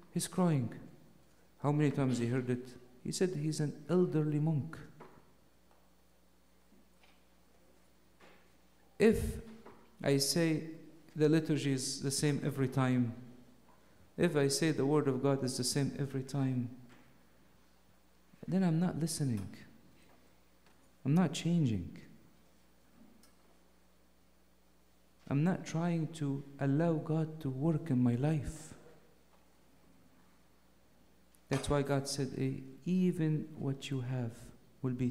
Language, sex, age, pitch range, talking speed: English, male, 50-69, 120-150 Hz, 110 wpm